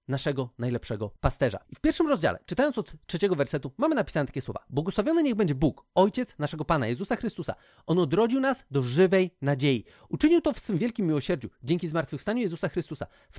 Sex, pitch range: male, 135-190 Hz